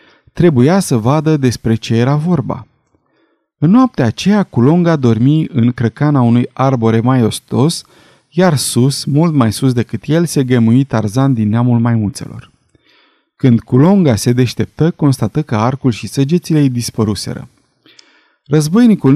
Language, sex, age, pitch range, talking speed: Romanian, male, 30-49, 115-155 Hz, 135 wpm